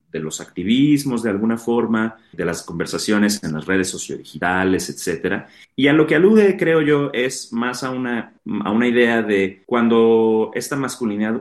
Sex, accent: male, Mexican